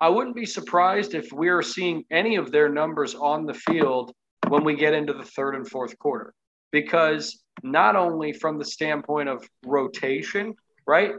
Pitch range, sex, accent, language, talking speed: 135-165 Hz, male, American, English, 170 wpm